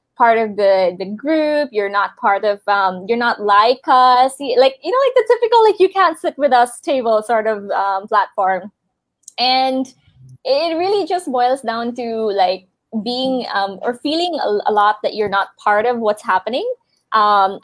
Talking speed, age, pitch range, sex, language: 185 wpm, 20-39, 205-250 Hz, female, English